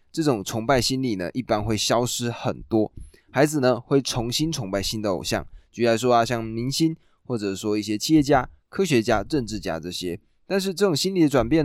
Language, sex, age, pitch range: Chinese, male, 20-39, 100-140 Hz